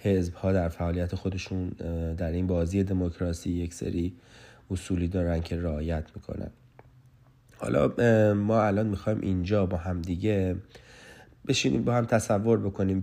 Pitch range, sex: 90-105 Hz, male